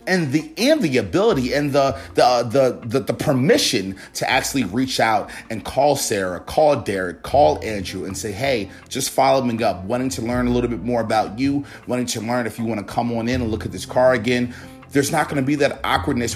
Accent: American